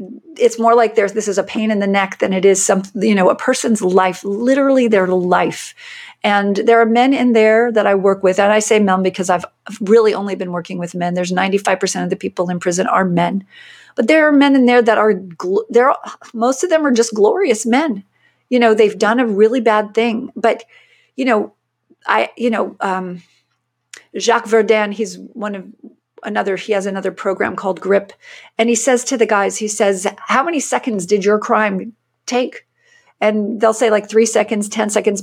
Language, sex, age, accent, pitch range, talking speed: English, female, 40-59, American, 195-235 Hz, 205 wpm